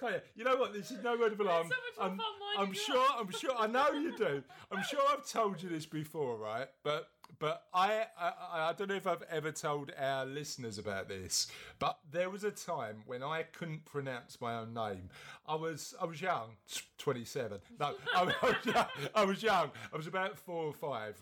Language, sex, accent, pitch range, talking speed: English, male, British, 155-235 Hz, 195 wpm